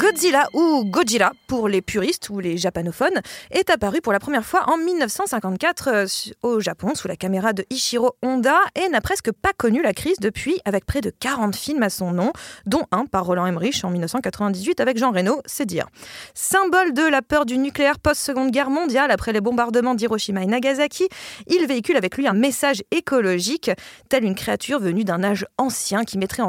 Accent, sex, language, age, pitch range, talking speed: French, female, French, 20-39, 205-300 Hz, 190 wpm